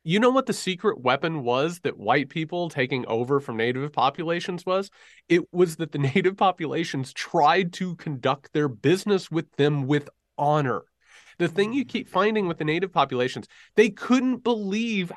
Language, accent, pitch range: English, American, 135-195 Hz